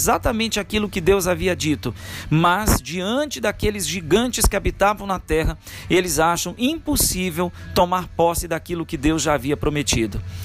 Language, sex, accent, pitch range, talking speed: Portuguese, male, Brazilian, 150-200 Hz, 145 wpm